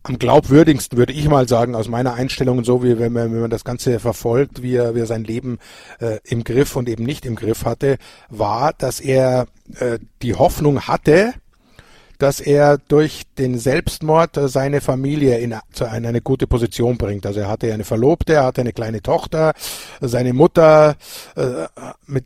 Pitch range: 120-145 Hz